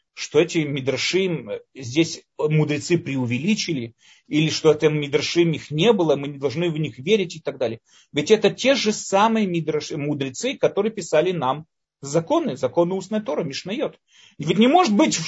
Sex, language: male, Russian